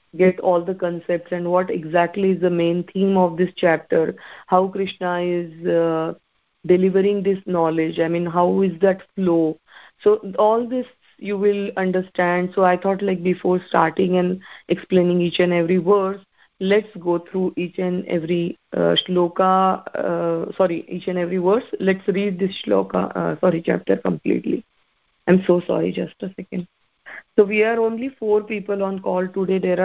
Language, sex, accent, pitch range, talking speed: English, female, Indian, 180-210 Hz, 165 wpm